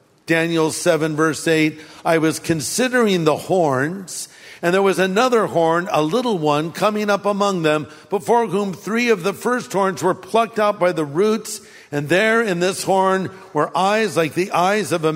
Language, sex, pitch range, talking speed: English, male, 165-215 Hz, 180 wpm